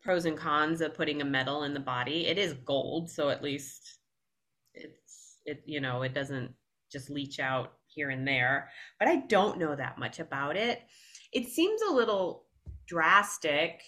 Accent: American